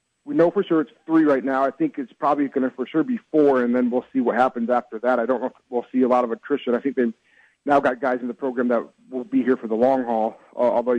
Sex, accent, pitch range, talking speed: male, American, 125-145 Hz, 300 wpm